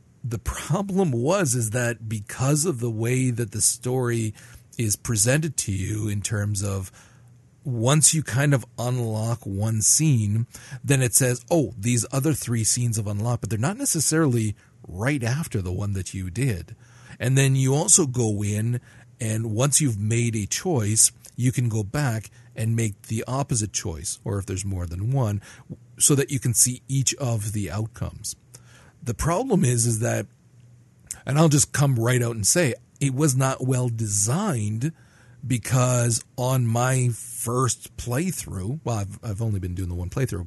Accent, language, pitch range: American, English, 110-130 Hz